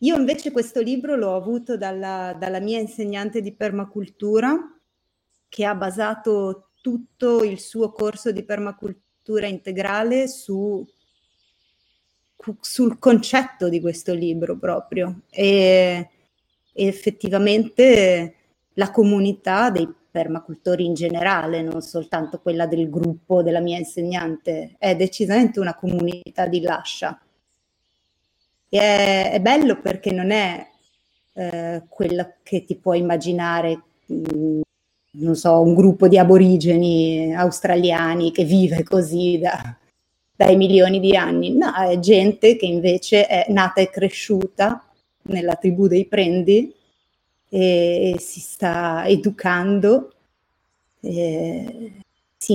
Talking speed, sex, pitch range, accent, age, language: 115 wpm, female, 170-210 Hz, native, 30-49, Italian